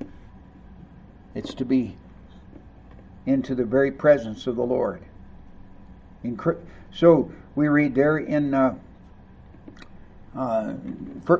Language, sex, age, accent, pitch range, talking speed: English, male, 60-79, American, 130-205 Hz, 105 wpm